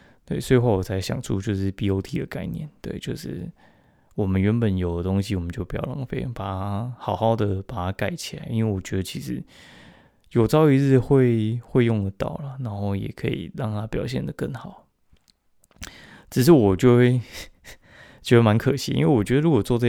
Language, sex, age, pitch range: Chinese, male, 20-39, 95-130 Hz